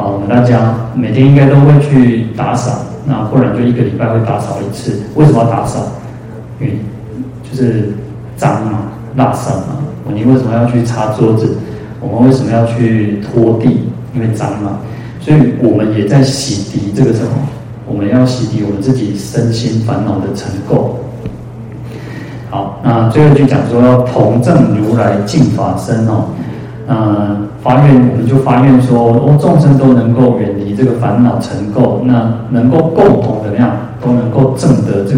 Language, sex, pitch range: Chinese, male, 110-130 Hz